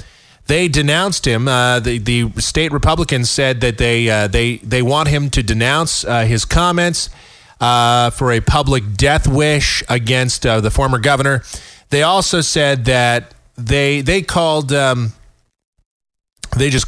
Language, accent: English, American